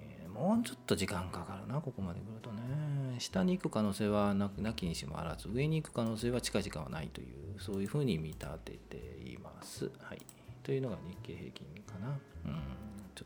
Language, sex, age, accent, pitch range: Japanese, male, 40-59, native, 85-125 Hz